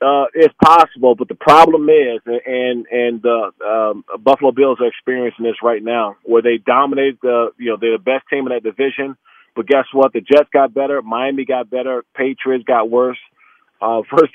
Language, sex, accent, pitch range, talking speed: English, male, American, 125-150 Hz, 195 wpm